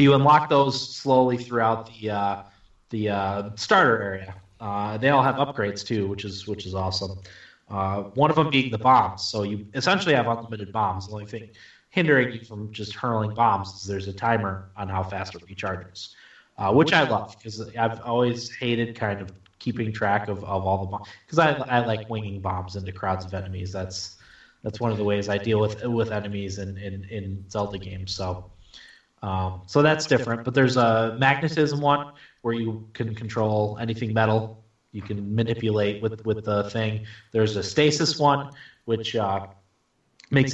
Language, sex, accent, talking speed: English, male, American, 185 wpm